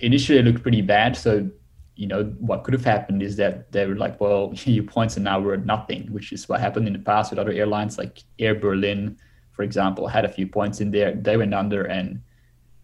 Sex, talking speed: male, 230 wpm